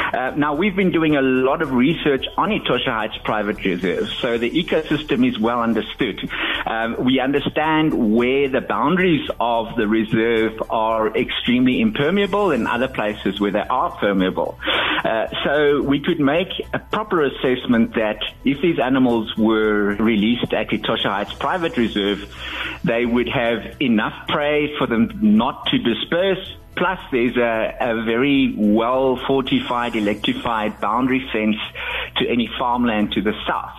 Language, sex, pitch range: English, male, 110-160 Hz